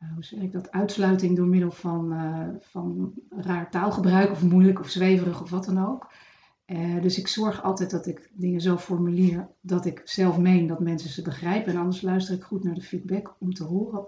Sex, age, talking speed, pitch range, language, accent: female, 40-59, 210 wpm, 175-195 Hz, Dutch, Dutch